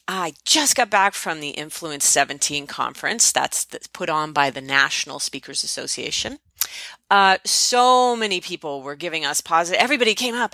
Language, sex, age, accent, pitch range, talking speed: English, female, 30-49, American, 155-240 Hz, 160 wpm